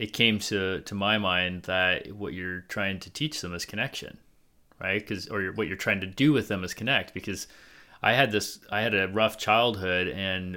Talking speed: 215 wpm